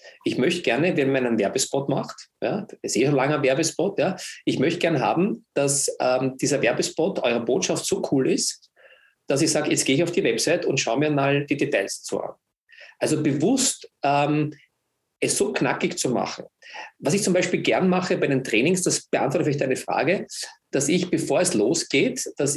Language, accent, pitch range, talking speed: German, German, 140-175 Hz, 195 wpm